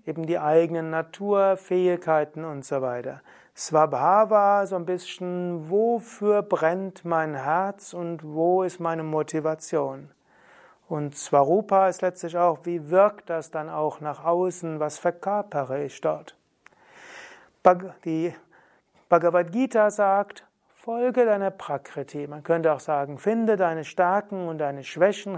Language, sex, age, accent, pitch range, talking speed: German, male, 30-49, German, 160-195 Hz, 125 wpm